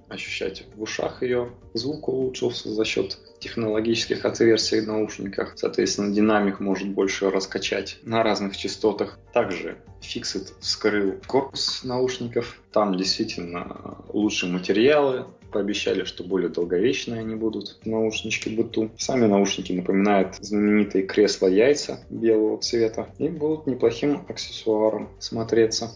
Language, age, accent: Russian, 20-39, native